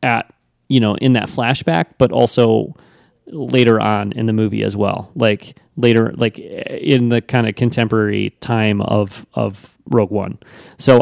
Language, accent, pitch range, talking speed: English, American, 105-125 Hz, 160 wpm